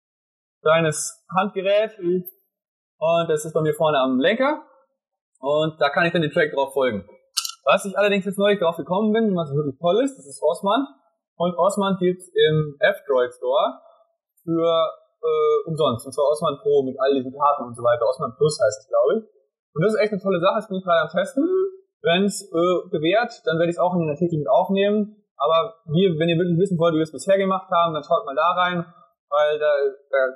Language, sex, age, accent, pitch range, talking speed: German, male, 20-39, German, 155-205 Hz, 215 wpm